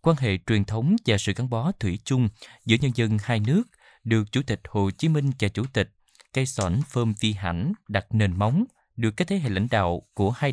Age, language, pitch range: 20-39, Vietnamese, 100-140 Hz